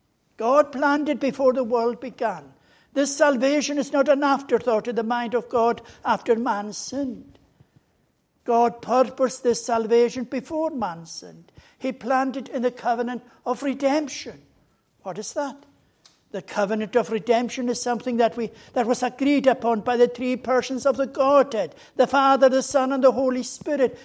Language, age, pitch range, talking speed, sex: English, 60-79, 235-270 Hz, 165 wpm, male